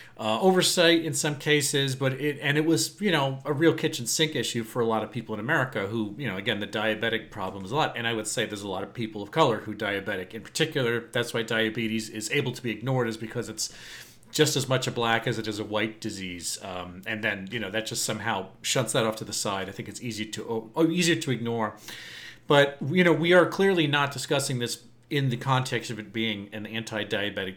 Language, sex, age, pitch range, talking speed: English, male, 40-59, 110-140 Hz, 245 wpm